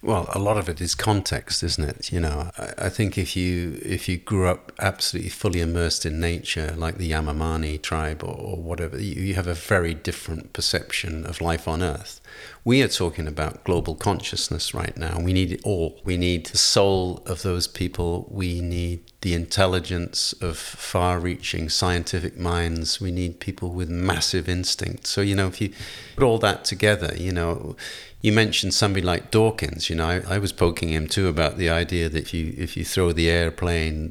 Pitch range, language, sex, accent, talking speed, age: 80-95 Hz, English, male, British, 195 wpm, 40-59